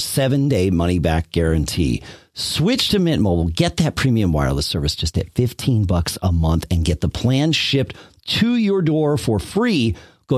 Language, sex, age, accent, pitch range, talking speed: English, male, 40-59, American, 90-145 Hz, 175 wpm